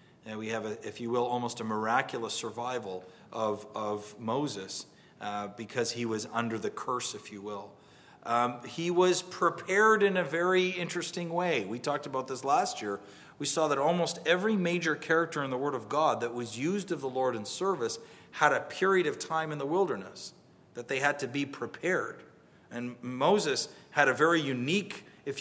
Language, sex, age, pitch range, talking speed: English, male, 40-59, 120-170 Hz, 190 wpm